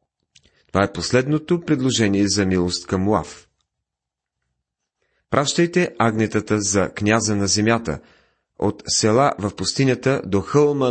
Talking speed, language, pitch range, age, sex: 110 wpm, Bulgarian, 100-130 Hz, 30-49, male